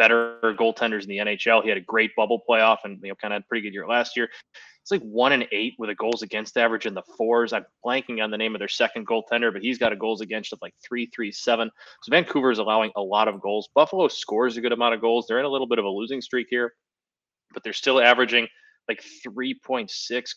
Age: 20-39